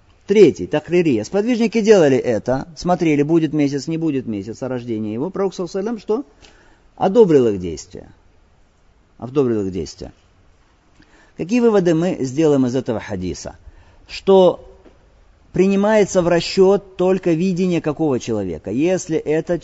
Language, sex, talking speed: Russian, male, 120 wpm